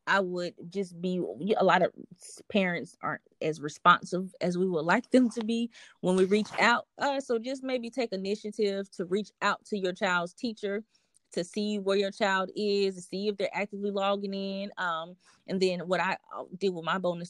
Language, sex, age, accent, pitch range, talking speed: English, female, 20-39, American, 165-195 Hz, 195 wpm